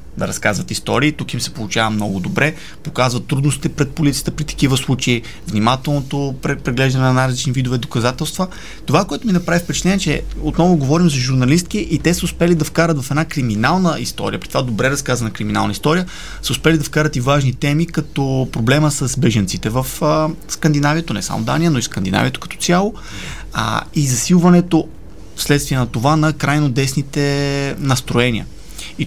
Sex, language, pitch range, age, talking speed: male, Bulgarian, 130-155 Hz, 30-49, 165 wpm